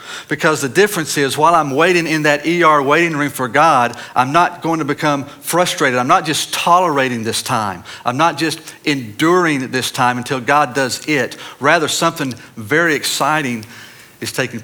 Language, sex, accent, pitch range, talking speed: English, male, American, 115-150 Hz, 170 wpm